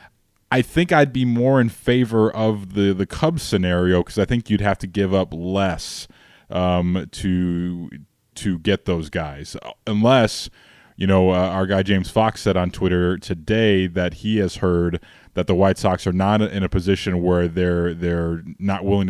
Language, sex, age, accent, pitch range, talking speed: English, male, 20-39, American, 90-105 Hz, 180 wpm